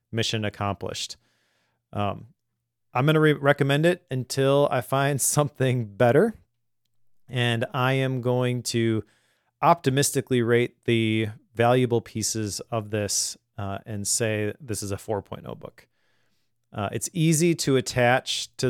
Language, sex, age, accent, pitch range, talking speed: English, male, 30-49, American, 115-130 Hz, 130 wpm